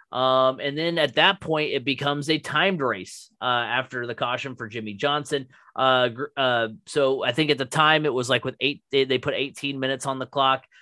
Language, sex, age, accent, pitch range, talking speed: English, male, 30-49, American, 125-150 Hz, 215 wpm